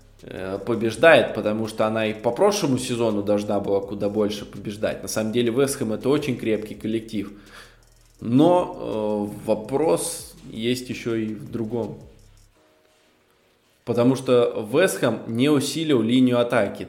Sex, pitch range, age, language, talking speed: male, 105-125 Hz, 20-39, Russian, 130 wpm